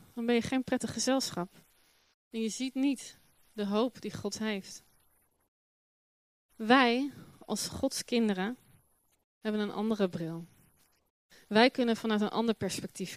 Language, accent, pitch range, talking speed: Dutch, Dutch, 185-230 Hz, 130 wpm